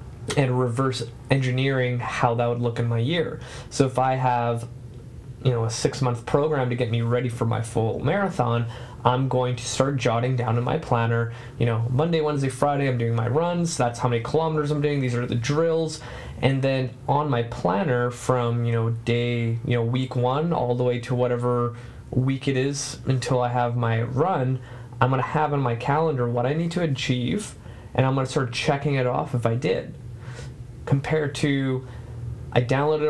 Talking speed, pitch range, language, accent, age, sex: 195 wpm, 120-135 Hz, English, American, 20-39, male